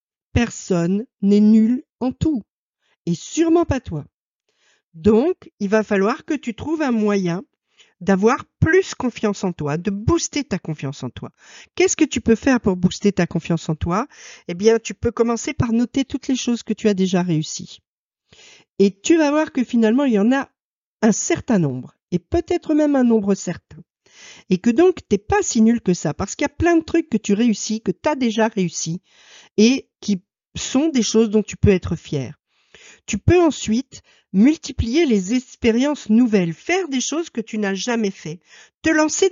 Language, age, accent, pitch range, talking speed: French, 50-69, French, 200-290 Hz, 190 wpm